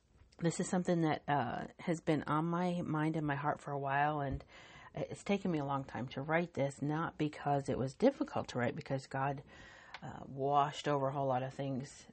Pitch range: 135-155 Hz